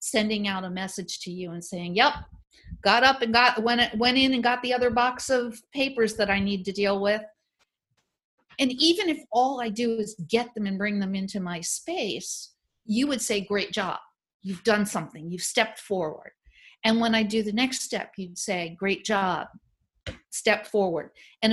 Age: 50-69